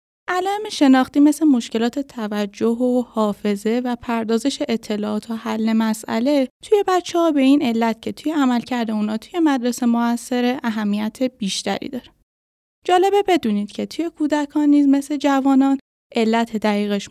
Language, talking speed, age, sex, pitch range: Persian, 135 wpm, 10-29, female, 225-295 Hz